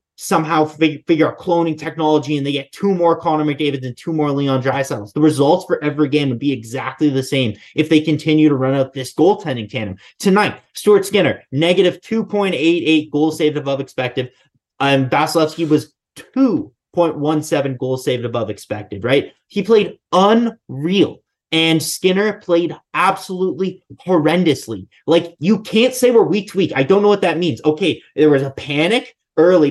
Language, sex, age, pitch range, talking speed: English, male, 20-39, 145-190 Hz, 170 wpm